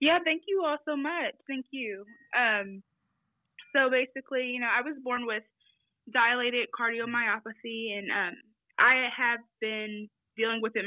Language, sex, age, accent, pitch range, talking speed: English, female, 20-39, American, 210-255 Hz, 150 wpm